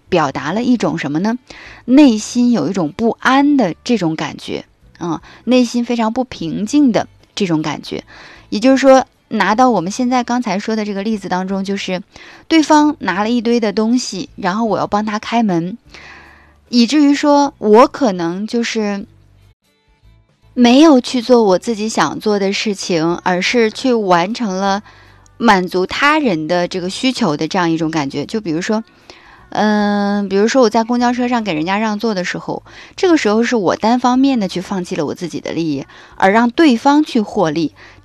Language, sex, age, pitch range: Chinese, female, 20-39, 180-245 Hz